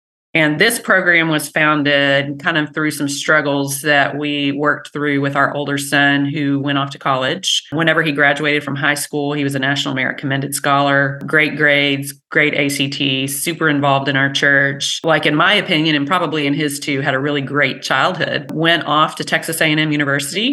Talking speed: 190 wpm